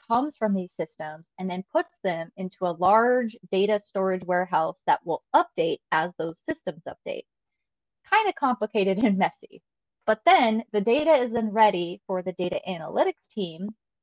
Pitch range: 185-235 Hz